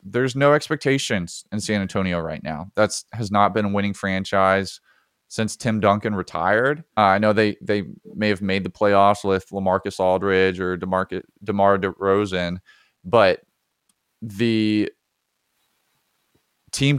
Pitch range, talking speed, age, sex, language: 95-115 Hz, 140 wpm, 30-49, male, English